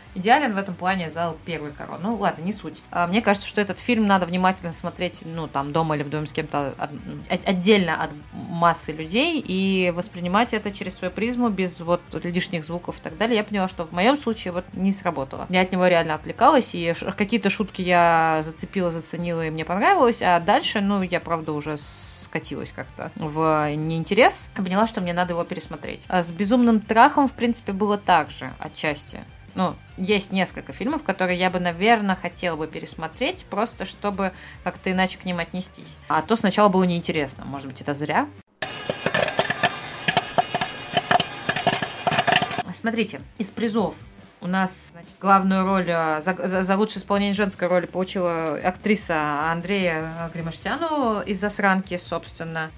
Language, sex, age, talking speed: Russian, female, 20-39, 165 wpm